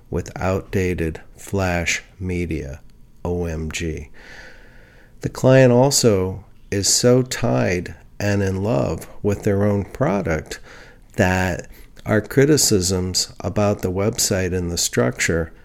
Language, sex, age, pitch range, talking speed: English, male, 50-69, 85-110 Hz, 105 wpm